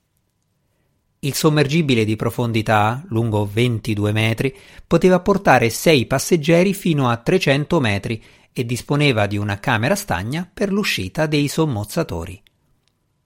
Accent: native